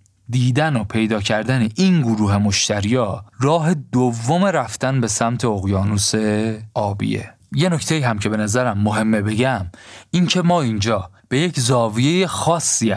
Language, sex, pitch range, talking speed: Persian, male, 105-140 Hz, 140 wpm